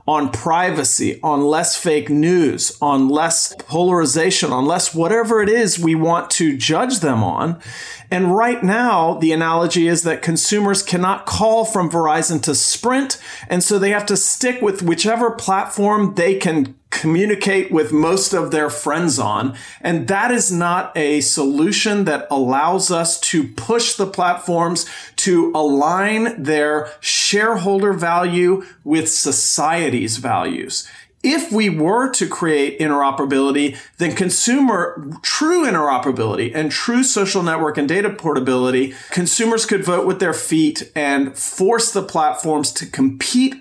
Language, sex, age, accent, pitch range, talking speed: English, male, 40-59, American, 150-195 Hz, 140 wpm